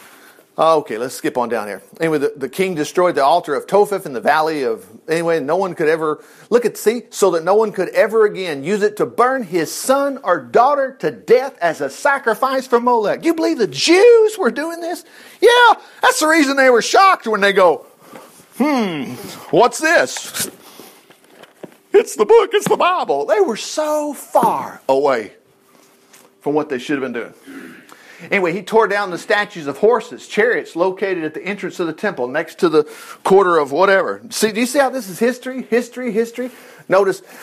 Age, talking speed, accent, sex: 50-69, 195 wpm, American, male